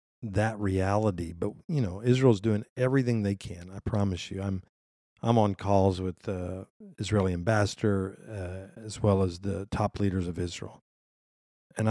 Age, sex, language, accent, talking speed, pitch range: 50-69, male, English, American, 160 wpm, 95-110 Hz